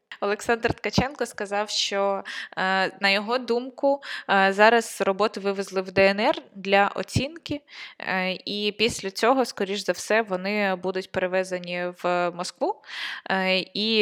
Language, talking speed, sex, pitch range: Ukrainian, 110 wpm, female, 180-205 Hz